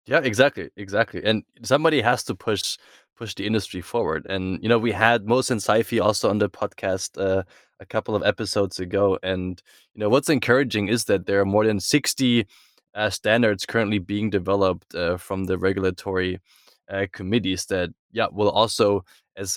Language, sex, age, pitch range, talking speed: English, male, 20-39, 95-115 Hz, 180 wpm